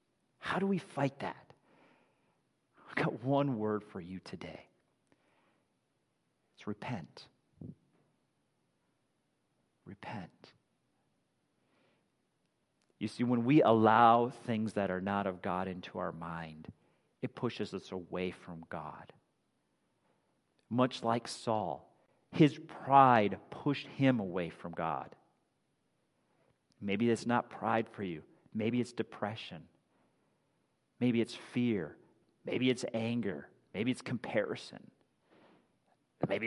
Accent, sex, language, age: American, male, English, 40-59